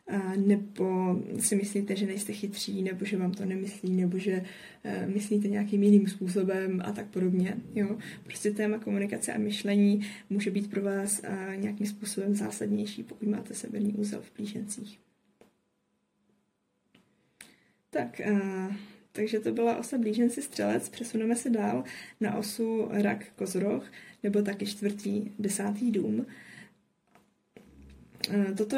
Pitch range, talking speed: 195-215 Hz, 125 wpm